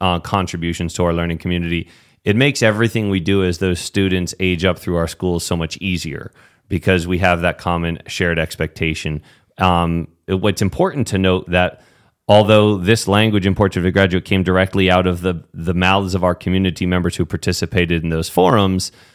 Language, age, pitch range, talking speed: English, 30-49, 90-105 Hz, 190 wpm